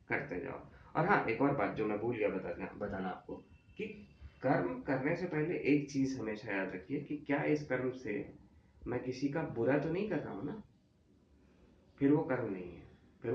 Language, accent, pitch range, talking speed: Hindi, native, 125-150 Hz, 200 wpm